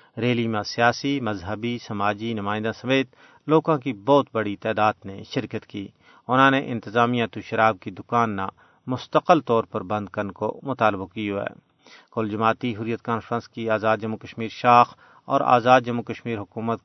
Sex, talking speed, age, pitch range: male, 165 wpm, 40-59, 105-125 Hz